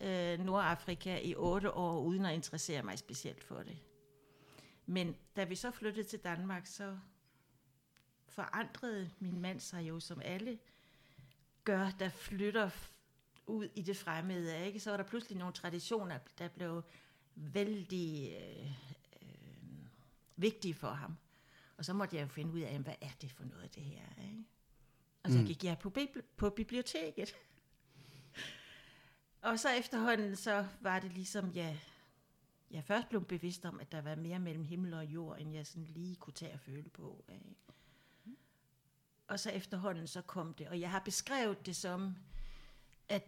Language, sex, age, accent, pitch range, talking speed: Danish, female, 60-79, native, 155-200 Hz, 165 wpm